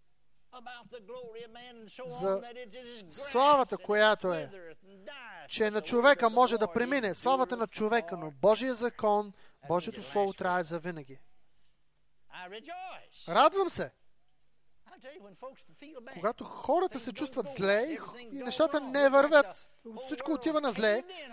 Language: English